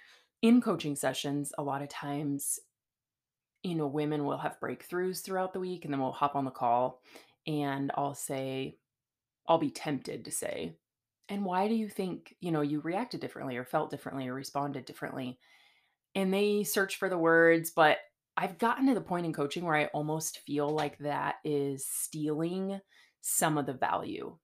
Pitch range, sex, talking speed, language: 135-175 Hz, female, 180 wpm, English